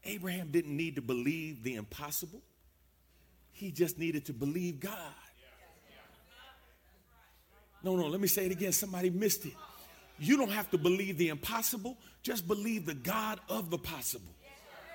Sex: male